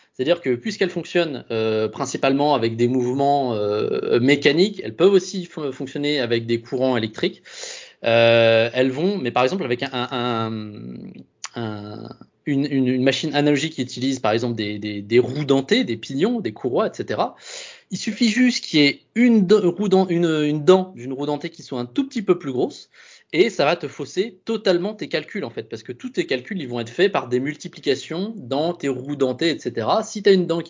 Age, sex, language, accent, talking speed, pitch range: 20-39, male, French, French, 200 wpm, 125-190 Hz